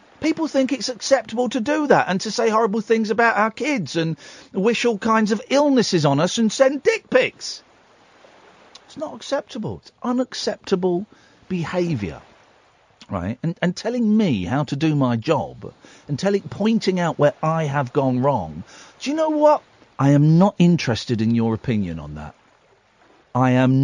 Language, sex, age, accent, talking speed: English, male, 40-59, British, 170 wpm